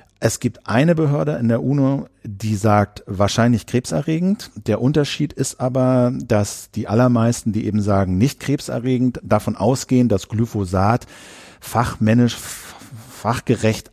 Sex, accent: male, German